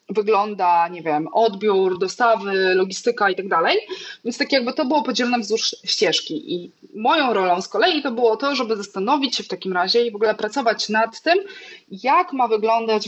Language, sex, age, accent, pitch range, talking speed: Polish, female, 20-39, native, 200-255 Hz, 185 wpm